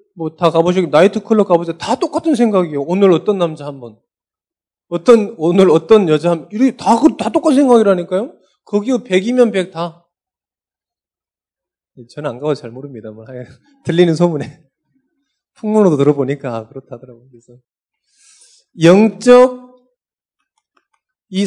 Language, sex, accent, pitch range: Korean, male, native, 160-240 Hz